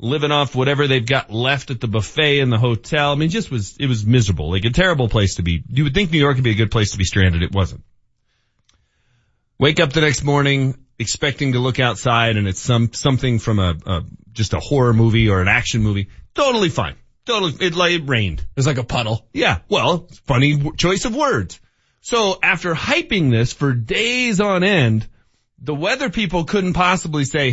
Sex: male